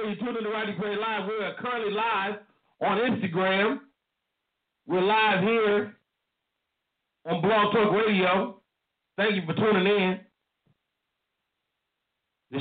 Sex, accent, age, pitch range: male, American, 50-69, 165-205 Hz